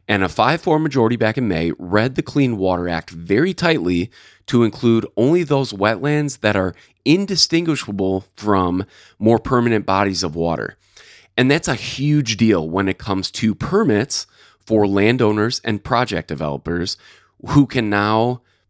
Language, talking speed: English, 150 wpm